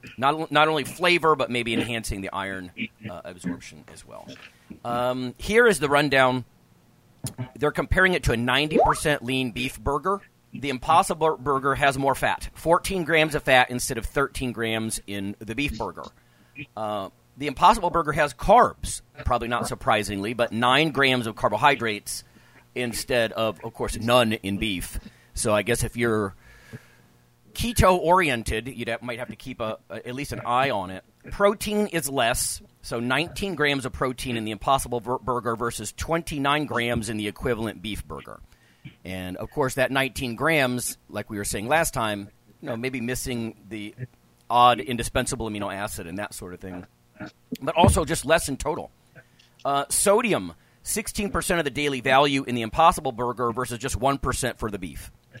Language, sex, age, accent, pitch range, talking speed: English, male, 40-59, American, 110-145 Hz, 165 wpm